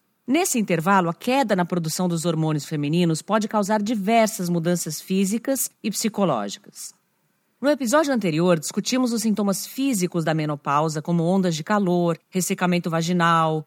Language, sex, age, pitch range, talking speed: Portuguese, female, 40-59, 165-220 Hz, 135 wpm